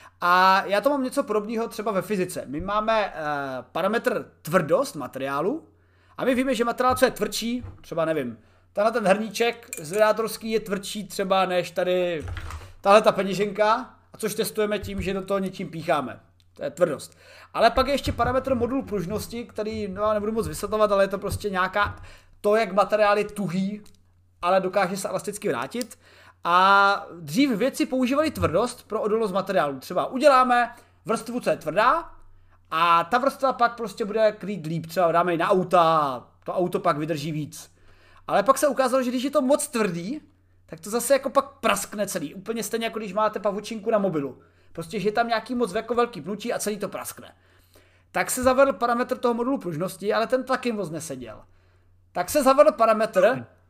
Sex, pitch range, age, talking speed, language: male, 170-235 Hz, 30-49, 180 wpm, Czech